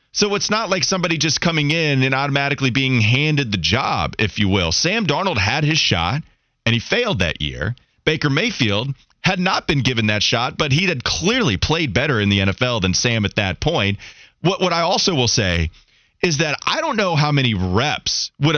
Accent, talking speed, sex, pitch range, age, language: American, 205 wpm, male, 120-180 Hz, 30-49, English